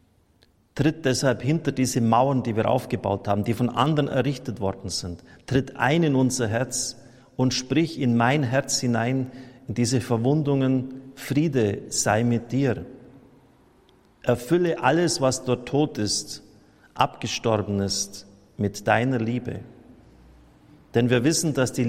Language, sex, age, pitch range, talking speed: German, male, 50-69, 115-135 Hz, 135 wpm